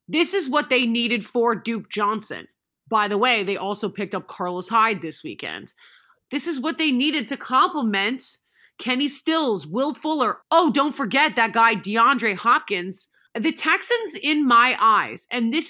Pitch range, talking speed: 220-275 Hz, 170 wpm